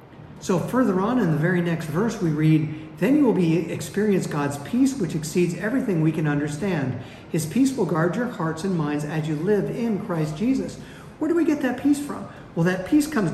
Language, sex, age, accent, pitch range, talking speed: English, male, 50-69, American, 160-230 Hz, 215 wpm